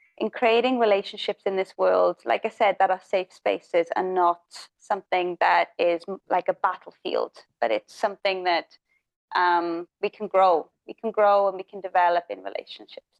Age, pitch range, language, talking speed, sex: 20-39, 190-245 Hz, English, 175 wpm, female